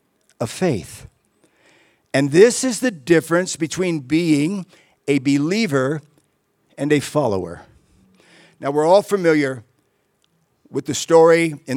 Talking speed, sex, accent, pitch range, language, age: 110 wpm, male, American, 130-160 Hz, English, 50-69